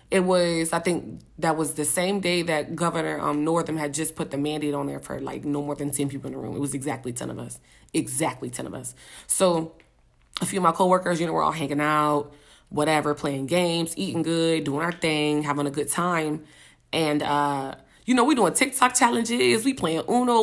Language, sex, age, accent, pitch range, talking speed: English, female, 20-39, American, 145-200 Hz, 220 wpm